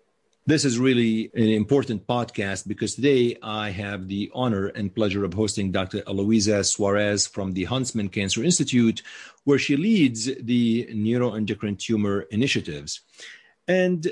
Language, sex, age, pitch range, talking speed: English, male, 40-59, 105-140 Hz, 135 wpm